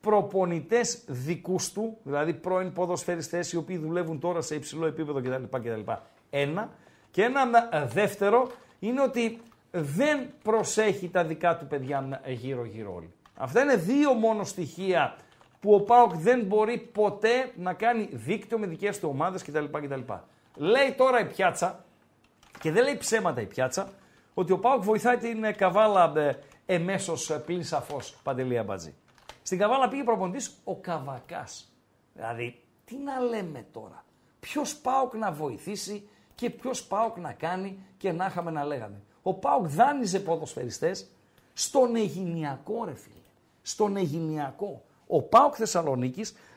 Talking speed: 140 wpm